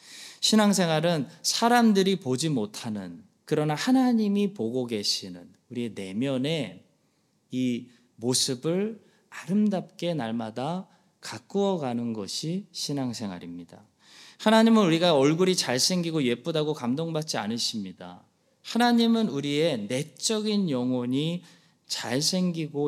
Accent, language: native, Korean